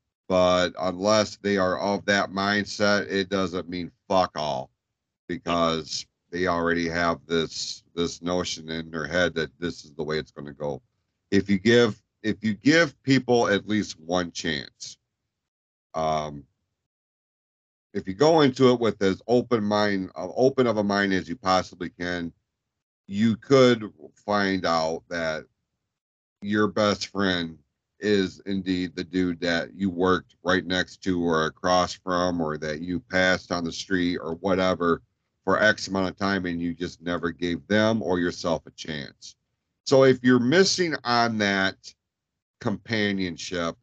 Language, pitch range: English, 85-105 Hz